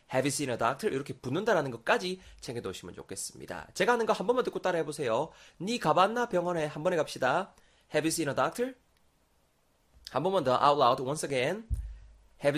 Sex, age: male, 20-39